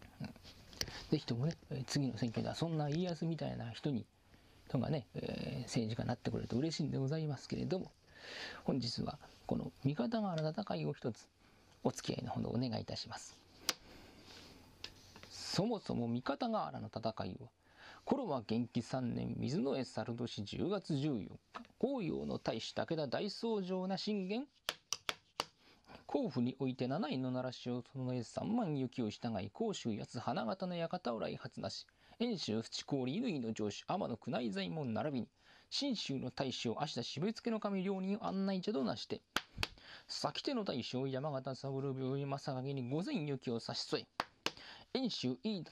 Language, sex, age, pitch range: Japanese, male, 40-59, 120-180 Hz